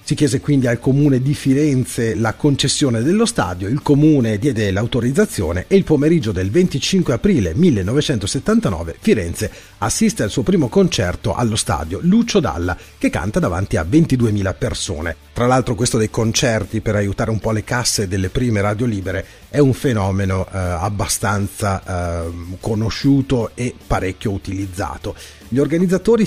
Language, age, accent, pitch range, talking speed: Italian, 40-59, native, 100-145 Hz, 150 wpm